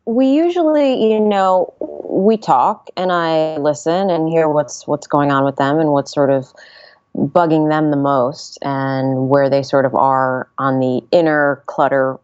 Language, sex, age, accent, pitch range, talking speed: English, female, 20-39, American, 145-200 Hz, 170 wpm